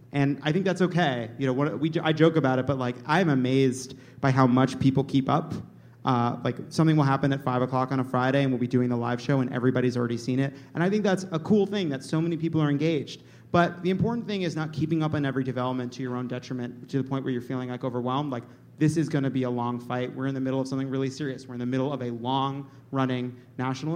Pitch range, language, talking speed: 130-145 Hz, English, 260 wpm